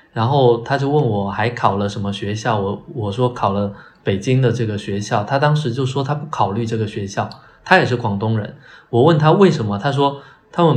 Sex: male